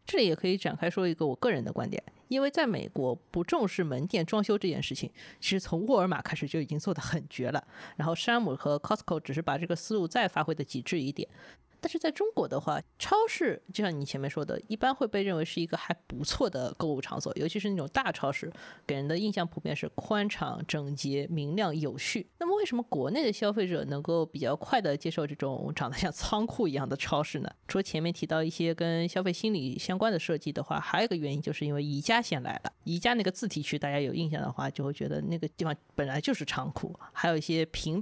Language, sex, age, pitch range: Chinese, female, 20-39, 150-195 Hz